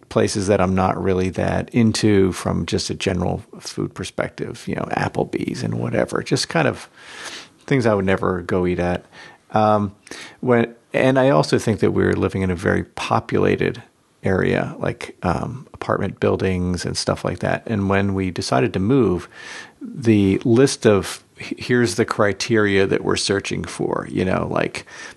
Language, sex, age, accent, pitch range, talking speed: English, male, 40-59, American, 95-110 Hz, 165 wpm